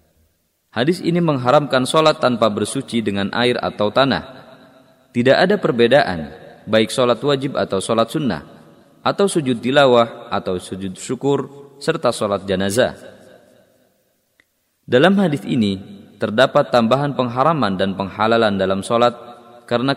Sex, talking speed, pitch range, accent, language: male, 115 wpm, 105-135 Hz, native, Indonesian